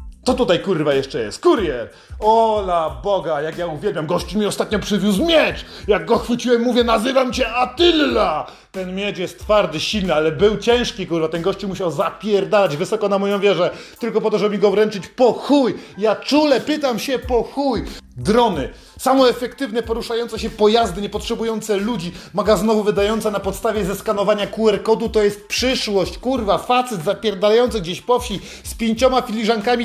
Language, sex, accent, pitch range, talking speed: Polish, male, native, 205-260 Hz, 160 wpm